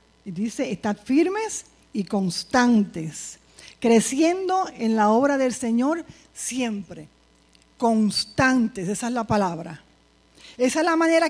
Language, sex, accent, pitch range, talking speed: English, female, American, 185-290 Hz, 115 wpm